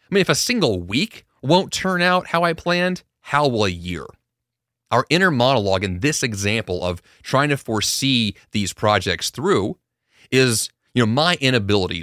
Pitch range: 100-145 Hz